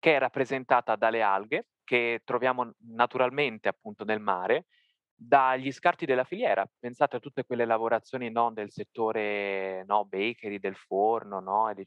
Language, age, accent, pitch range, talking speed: Italian, 20-39, native, 110-145 Hz, 150 wpm